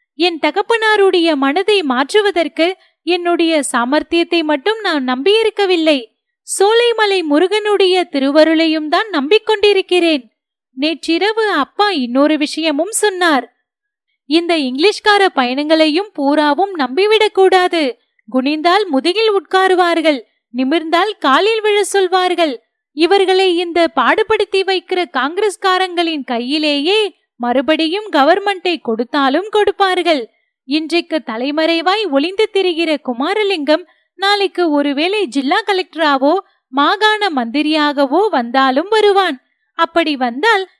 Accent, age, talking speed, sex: native, 30-49, 60 wpm, female